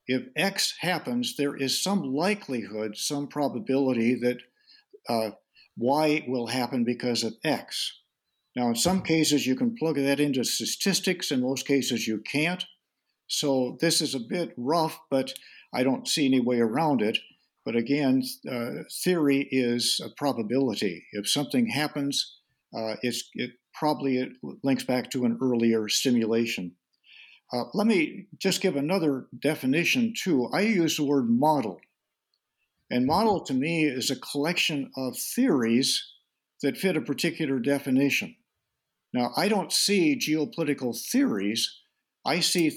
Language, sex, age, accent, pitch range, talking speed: English, male, 50-69, American, 125-180 Hz, 140 wpm